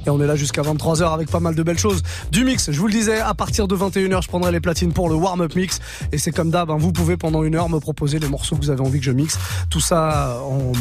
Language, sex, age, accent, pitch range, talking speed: French, male, 20-39, French, 145-185 Hz, 300 wpm